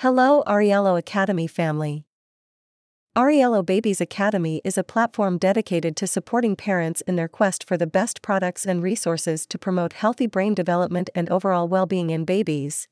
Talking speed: 155 wpm